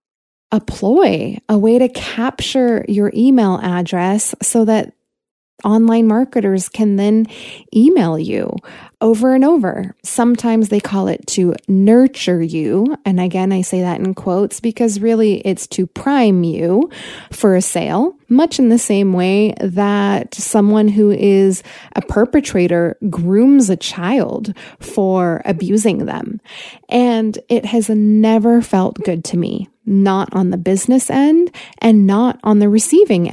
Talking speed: 140 wpm